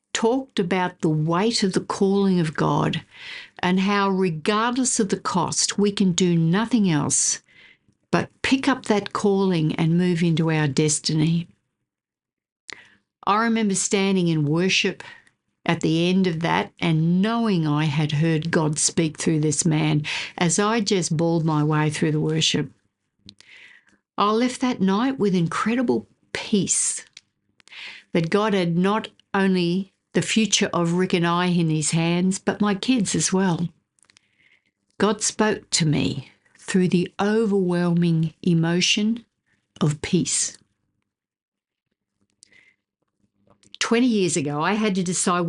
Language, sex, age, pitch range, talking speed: English, female, 60-79, 165-215 Hz, 135 wpm